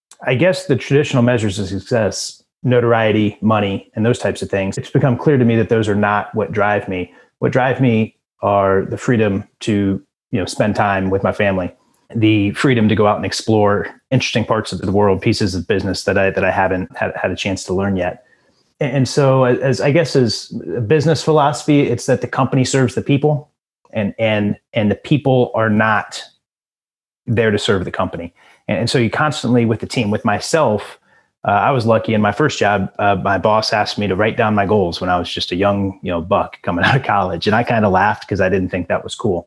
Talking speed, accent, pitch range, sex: 220 wpm, American, 100-125 Hz, male